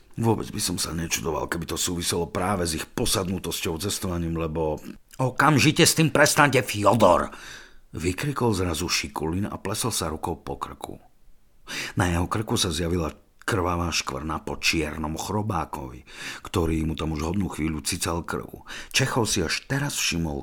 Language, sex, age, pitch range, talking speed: Slovak, male, 50-69, 80-115 Hz, 150 wpm